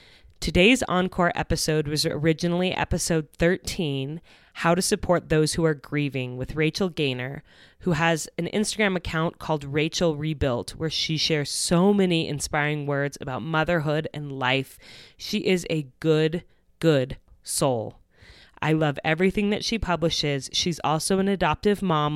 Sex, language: female, English